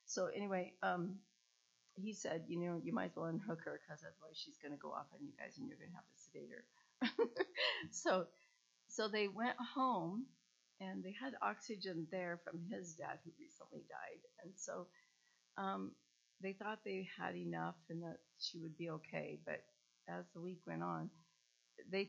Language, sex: English, female